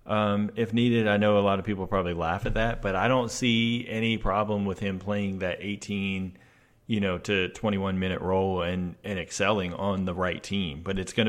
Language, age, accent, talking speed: English, 40-59, American, 215 wpm